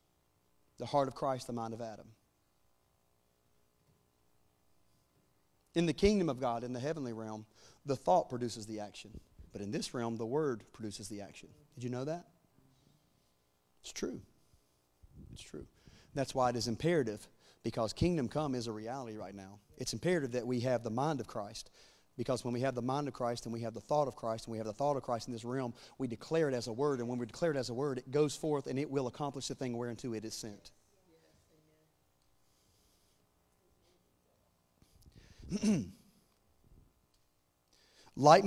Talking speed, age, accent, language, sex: 180 wpm, 40-59, American, English, male